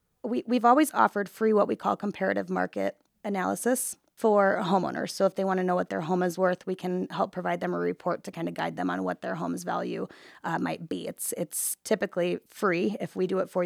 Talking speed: 235 wpm